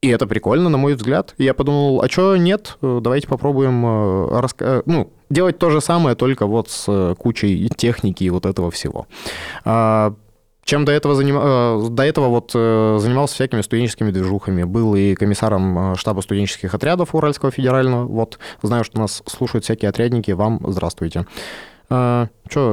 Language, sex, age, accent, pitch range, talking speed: Russian, male, 20-39, native, 105-135 Hz, 150 wpm